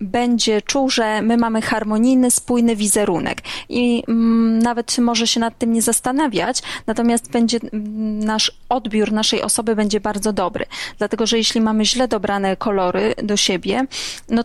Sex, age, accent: female, 20-39, native